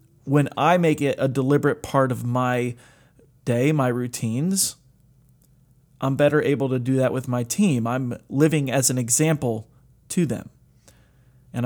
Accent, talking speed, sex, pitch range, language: American, 150 wpm, male, 130-160 Hz, English